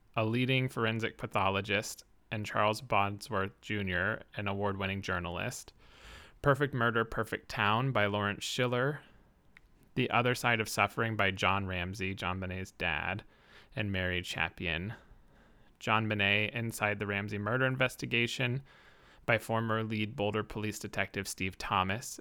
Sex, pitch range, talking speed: male, 95-115 Hz, 130 wpm